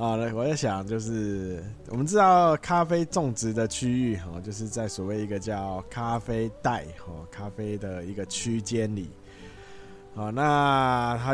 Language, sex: Chinese, male